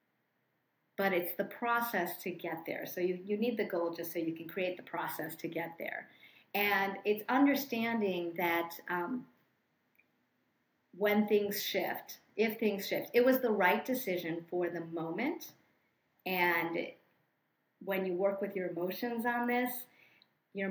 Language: English